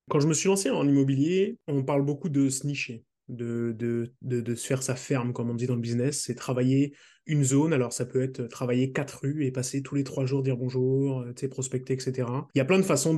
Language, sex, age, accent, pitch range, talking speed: French, male, 20-39, French, 125-140 Hz, 245 wpm